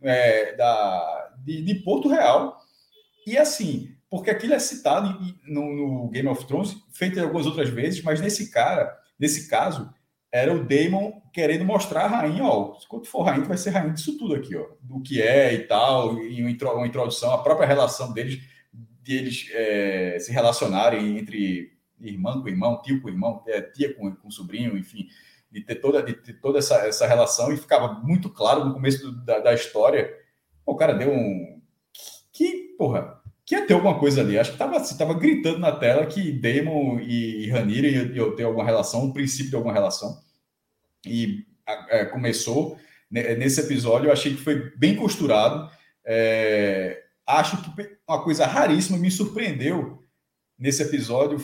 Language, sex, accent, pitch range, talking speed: Portuguese, male, Brazilian, 120-175 Hz, 180 wpm